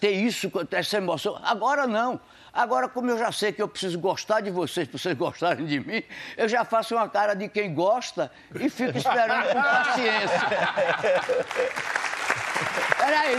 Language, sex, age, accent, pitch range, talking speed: Portuguese, male, 60-79, Brazilian, 185-255 Hz, 165 wpm